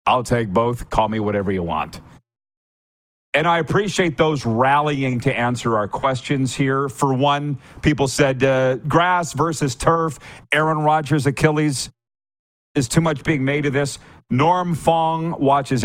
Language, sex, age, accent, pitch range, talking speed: English, male, 50-69, American, 115-150 Hz, 150 wpm